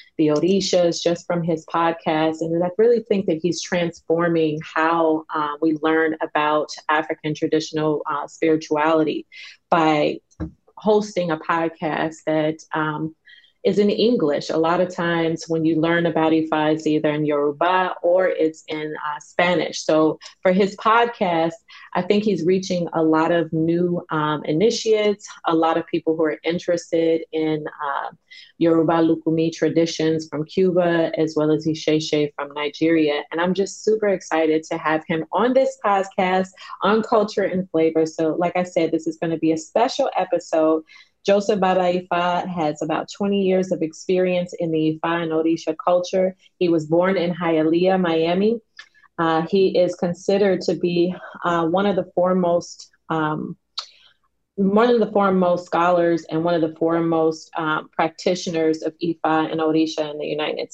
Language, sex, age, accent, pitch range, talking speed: English, female, 30-49, American, 160-180 Hz, 160 wpm